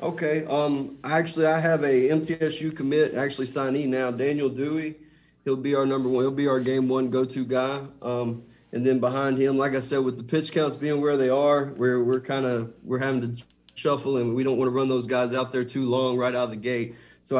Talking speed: 230 wpm